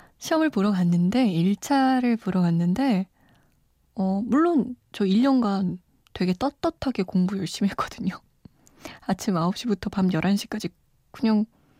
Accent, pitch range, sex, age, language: native, 185-245 Hz, female, 20-39, Korean